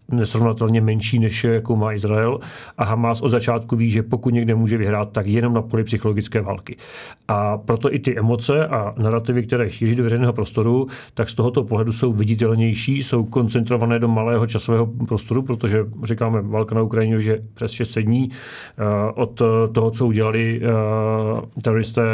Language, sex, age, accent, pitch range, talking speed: Czech, male, 40-59, native, 110-120 Hz, 165 wpm